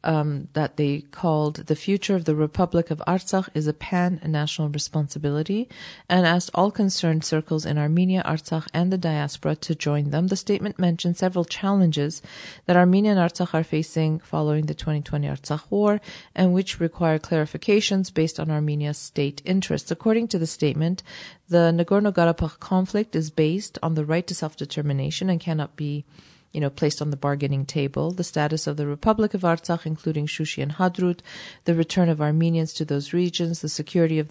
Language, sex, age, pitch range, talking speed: English, female, 40-59, 150-180 Hz, 175 wpm